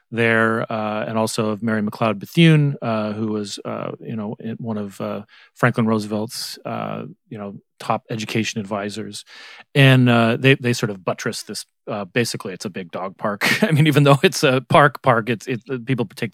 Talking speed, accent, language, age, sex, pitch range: 190 wpm, American, English, 40-59, male, 115-150 Hz